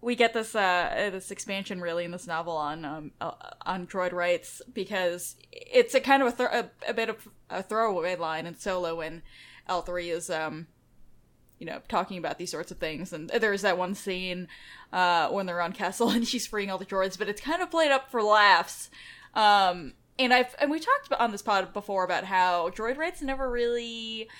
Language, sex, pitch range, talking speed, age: English, female, 180-235 Hz, 205 wpm, 10-29